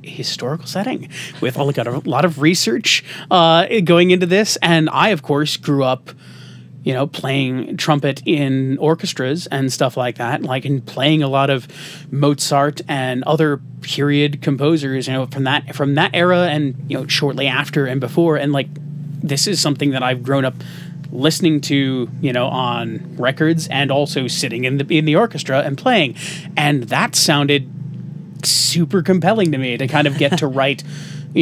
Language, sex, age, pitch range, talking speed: English, male, 30-49, 135-155 Hz, 175 wpm